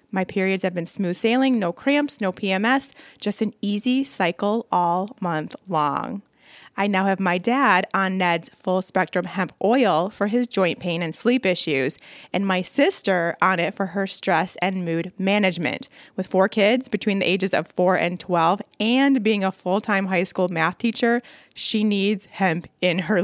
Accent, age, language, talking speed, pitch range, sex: American, 20-39, English, 180 wpm, 185-240 Hz, female